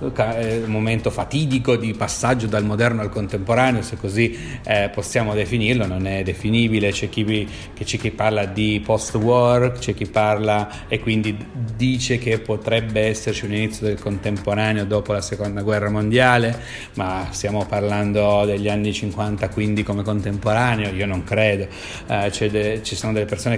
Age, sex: 30-49, male